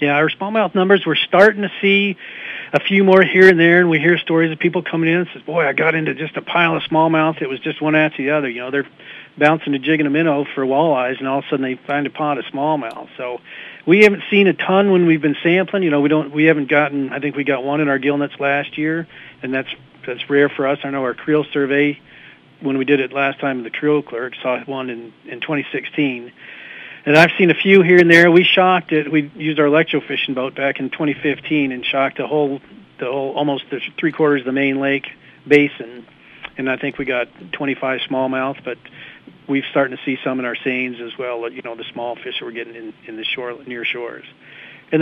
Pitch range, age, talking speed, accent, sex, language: 130-160 Hz, 50-69, 235 wpm, American, male, English